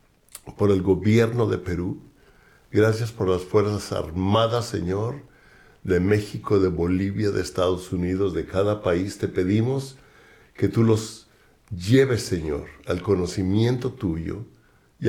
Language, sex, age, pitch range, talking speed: Spanish, male, 60-79, 90-115 Hz, 125 wpm